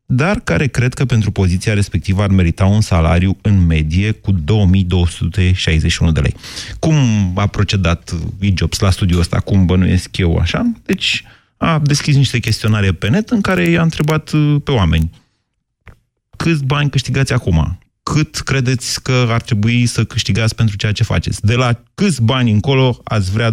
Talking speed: 160 wpm